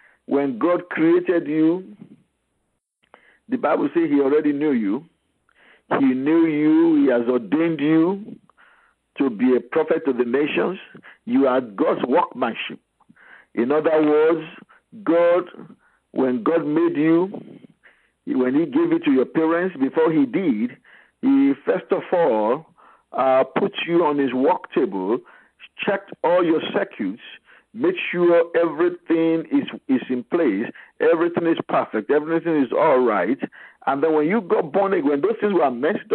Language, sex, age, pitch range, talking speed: English, male, 50-69, 150-230 Hz, 145 wpm